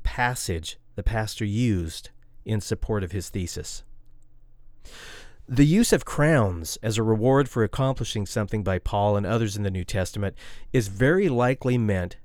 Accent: American